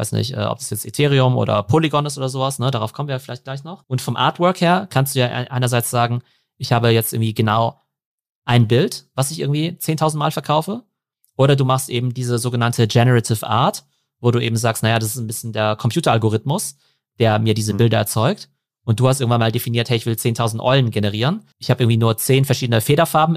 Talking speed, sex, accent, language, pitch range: 215 wpm, male, German, German, 115-140 Hz